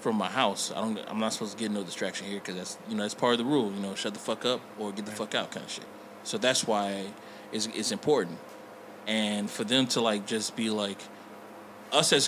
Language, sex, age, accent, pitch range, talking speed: English, male, 20-39, American, 105-130 Hz, 255 wpm